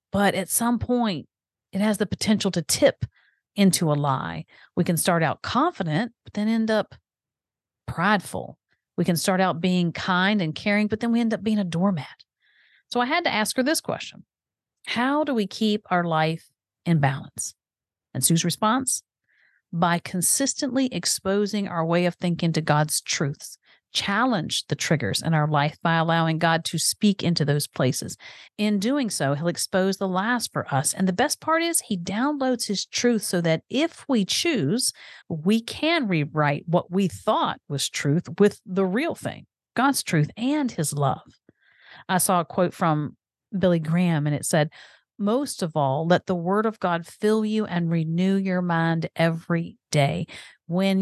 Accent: American